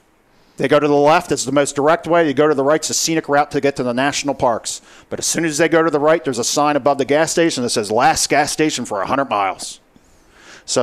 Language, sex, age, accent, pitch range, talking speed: English, male, 50-69, American, 120-165 Hz, 275 wpm